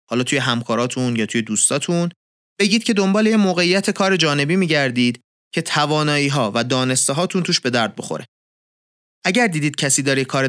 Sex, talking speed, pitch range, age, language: male, 165 wpm, 120-170 Hz, 30-49, Persian